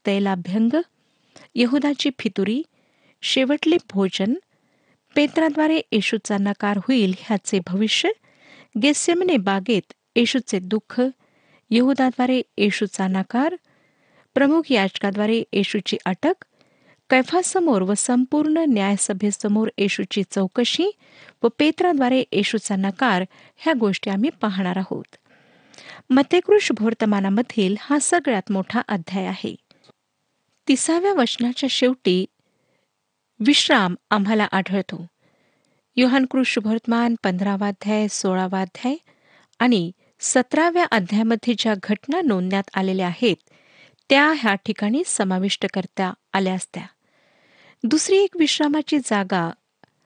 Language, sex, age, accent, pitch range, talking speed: Marathi, female, 50-69, native, 200-275 Hz, 90 wpm